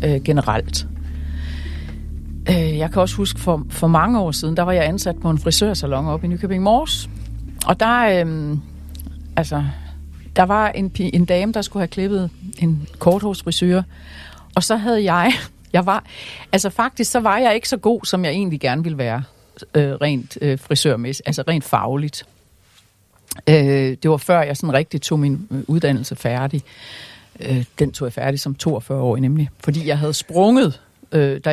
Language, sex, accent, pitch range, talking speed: Danish, female, native, 135-215 Hz, 170 wpm